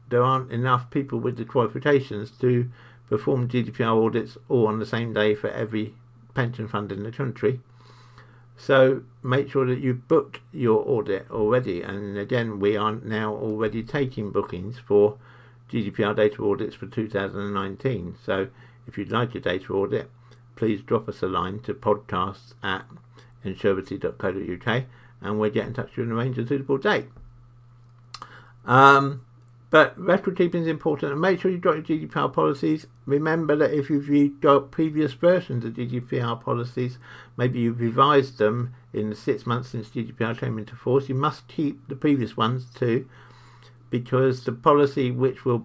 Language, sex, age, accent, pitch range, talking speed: English, male, 50-69, British, 115-130 Hz, 160 wpm